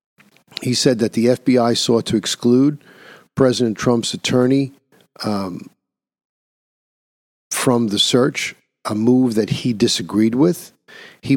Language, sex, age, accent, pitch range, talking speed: English, male, 50-69, American, 110-135 Hz, 115 wpm